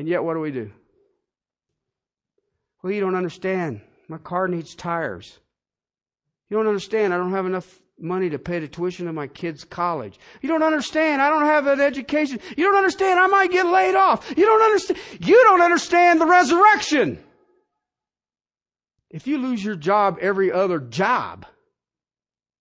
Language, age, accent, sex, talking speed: English, 50-69, American, male, 165 wpm